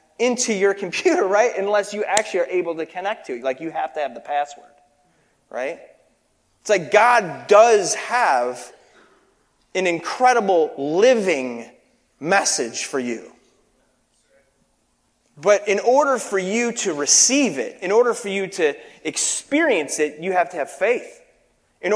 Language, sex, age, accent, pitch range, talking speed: English, male, 30-49, American, 165-270 Hz, 145 wpm